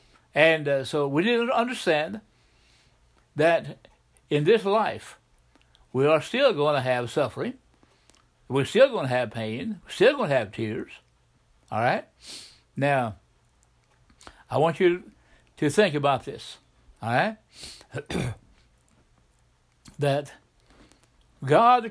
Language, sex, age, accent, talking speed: English, male, 60-79, American, 120 wpm